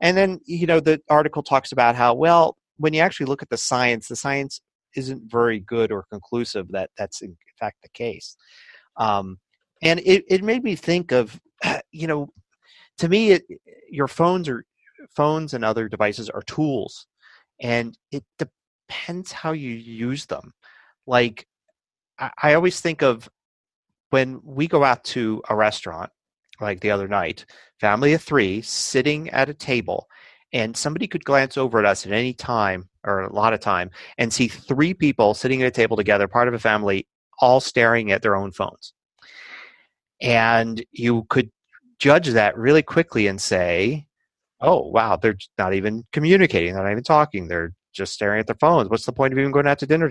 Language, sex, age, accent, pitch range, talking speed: English, male, 30-49, American, 110-155 Hz, 180 wpm